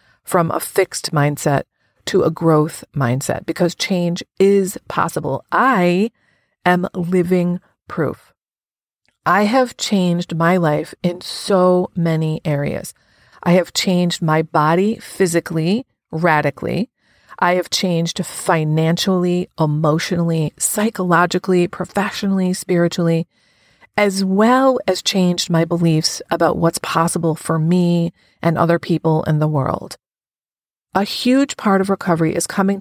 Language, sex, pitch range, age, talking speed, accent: English, female, 165-190 Hz, 40-59, 115 wpm, American